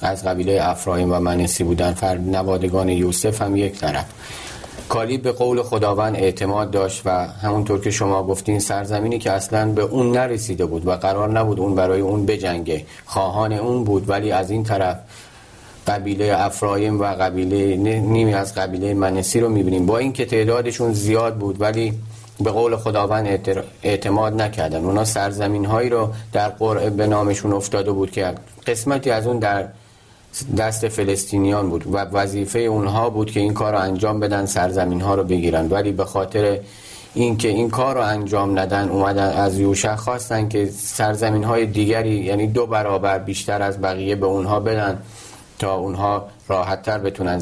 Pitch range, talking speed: 95-110 Hz, 165 wpm